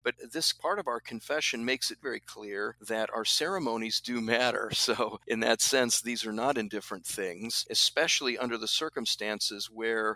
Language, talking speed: English, 170 wpm